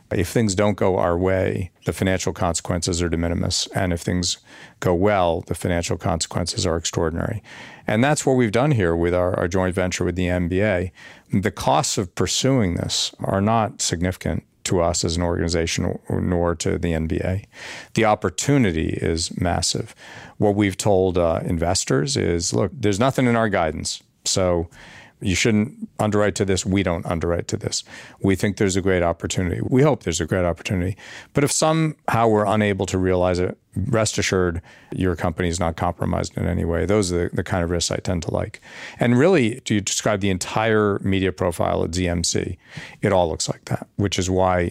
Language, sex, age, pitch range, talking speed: English, male, 50-69, 90-105 Hz, 190 wpm